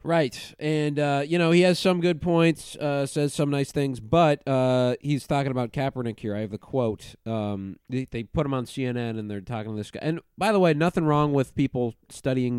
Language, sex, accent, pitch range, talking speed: English, male, American, 105-130 Hz, 230 wpm